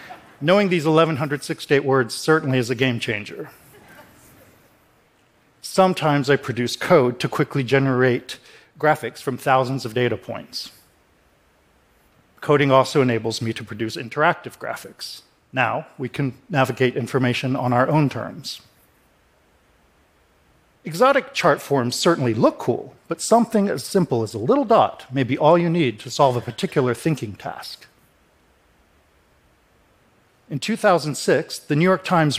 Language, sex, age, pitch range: Japanese, male, 50-69, 120-160 Hz